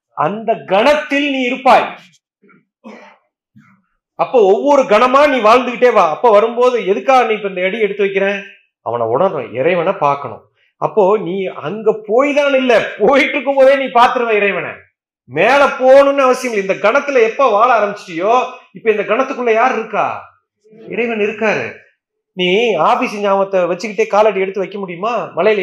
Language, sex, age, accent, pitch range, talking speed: Tamil, male, 30-49, native, 195-245 Hz, 130 wpm